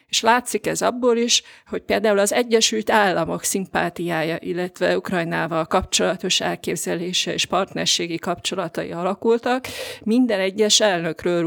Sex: female